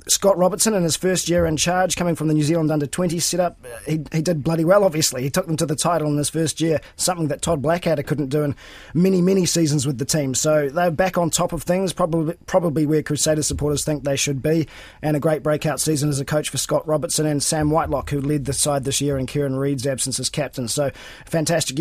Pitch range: 145-175 Hz